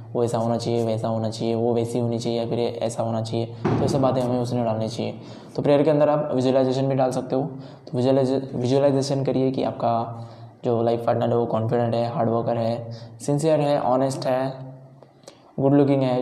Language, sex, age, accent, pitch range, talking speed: Hindi, male, 10-29, native, 120-135 Hz, 195 wpm